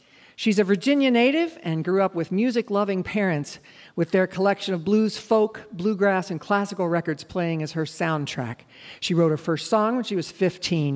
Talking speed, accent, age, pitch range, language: 180 wpm, American, 50-69, 155-210 Hz, English